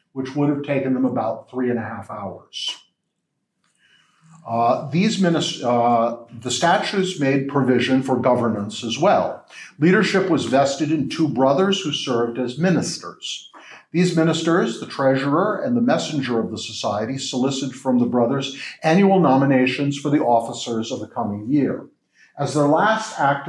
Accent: American